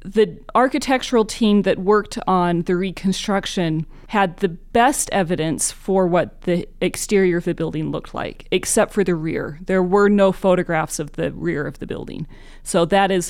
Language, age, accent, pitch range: English, 30-49, American, 165-200 Hz